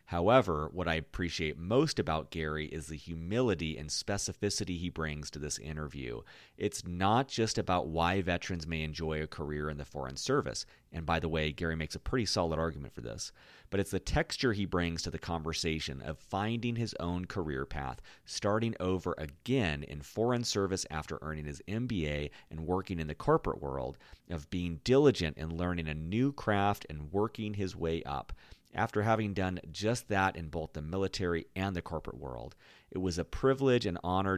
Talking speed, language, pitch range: 185 wpm, English, 80-100 Hz